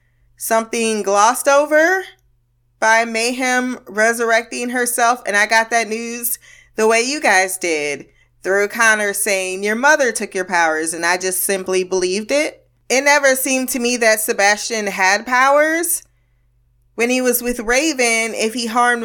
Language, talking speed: English, 150 wpm